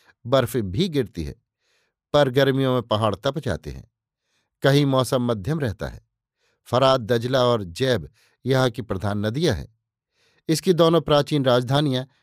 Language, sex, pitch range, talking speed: Hindi, male, 120-150 Hz, 140 wpm